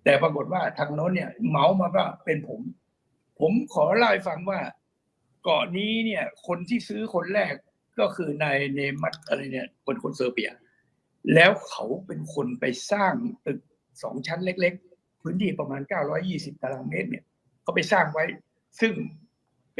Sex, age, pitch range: male, 60-79, 150-210 Hz